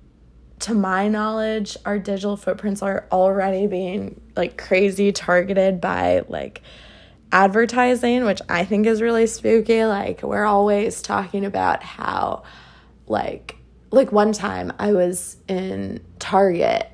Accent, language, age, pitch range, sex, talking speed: American, English, 20-39, 185-215 Hz, female, 125 wpm